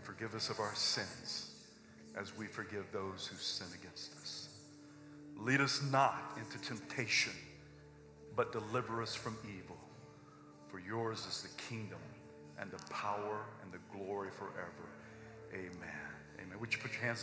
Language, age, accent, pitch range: English, 50-69, American, 115-170 Hz